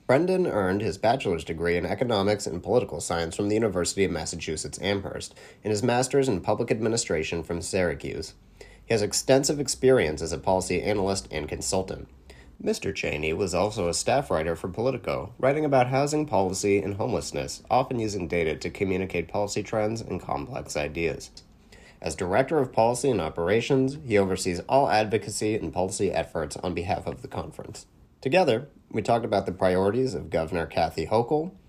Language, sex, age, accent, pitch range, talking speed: English, male, 30-49, American, 90-125 Hz, 165 wpm